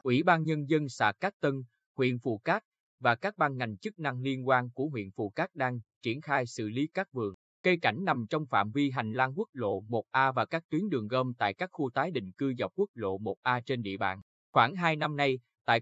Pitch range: 115-150 Hz